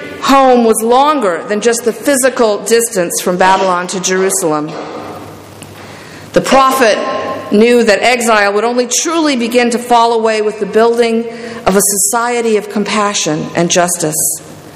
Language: English